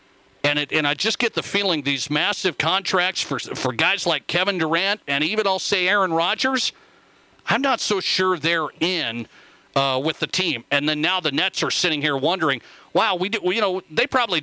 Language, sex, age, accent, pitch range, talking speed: English, male, 40-59, American, 140-180 Hz, 210 wpm